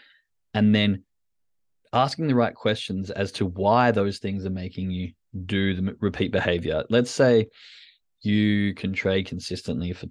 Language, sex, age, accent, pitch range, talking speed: English, male, 20-39, Australian, 95-115 Hz, 150 wpm